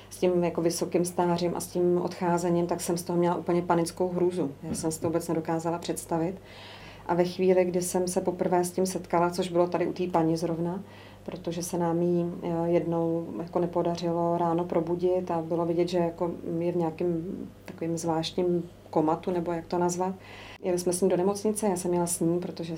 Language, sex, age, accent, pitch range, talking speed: Czech, female, 30-49, native, 170-180 Hz, 200 wpm